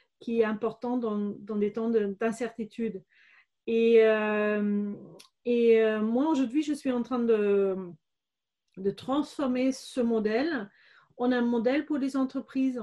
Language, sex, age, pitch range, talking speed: French, female, 40-59, 230-275 Hz, 140 wpm